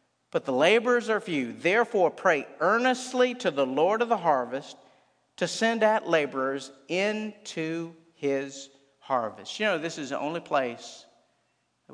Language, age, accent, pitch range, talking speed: English, 50-69, American, 165-235 Hz, 145 wpm